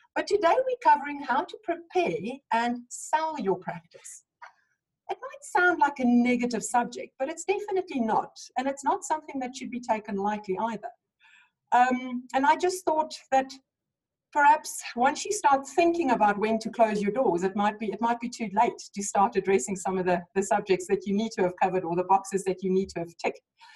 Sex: female